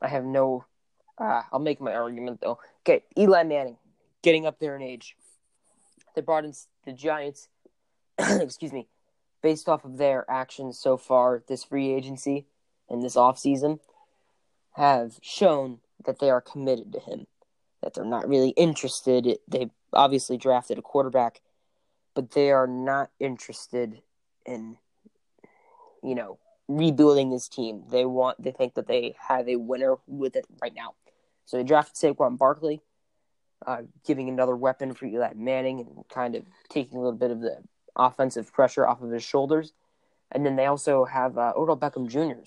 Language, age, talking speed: English, 10-29, 160 wpm